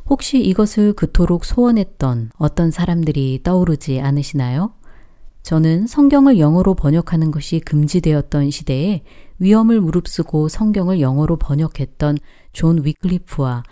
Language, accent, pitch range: Korean, native, 145-200 Hz